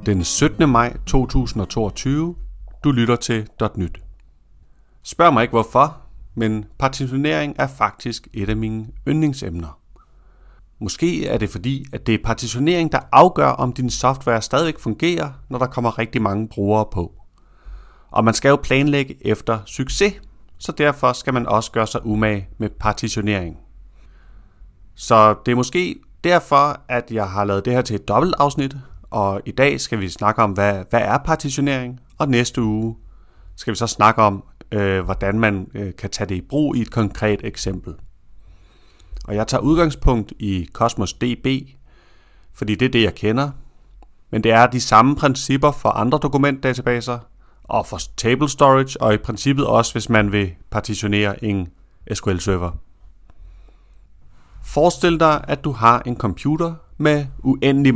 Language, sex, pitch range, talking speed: Danish, male, 100-135 Hz, 155 wpm